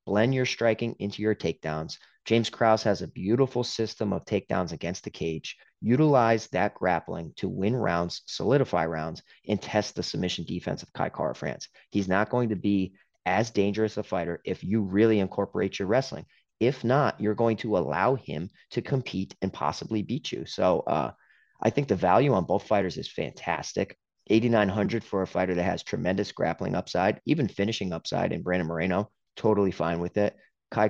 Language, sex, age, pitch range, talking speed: English, male, 30-49, 90-110 Hz, 180 wpm